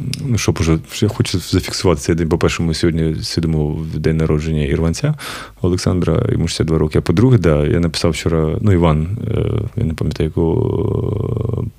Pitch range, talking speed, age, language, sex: 80-100 Hz, 145 wpm, 30-49, Ukrainian, male